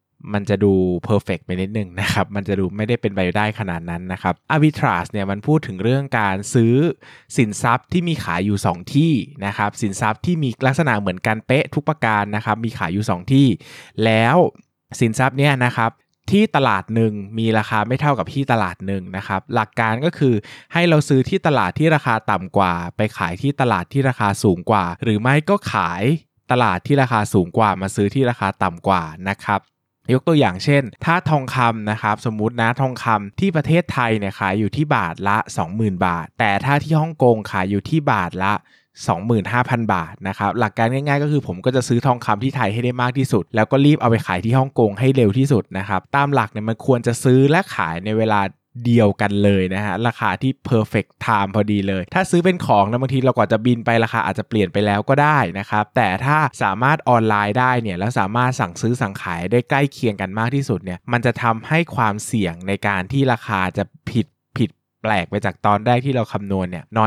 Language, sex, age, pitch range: Thai, male, 20-39, 100-130 Hz